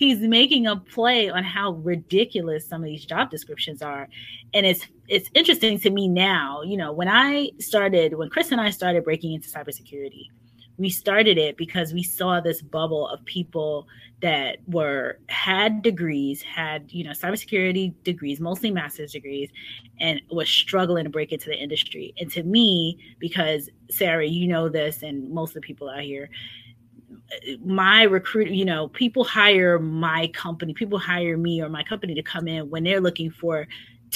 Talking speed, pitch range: 175 wpm, 155-200 Hz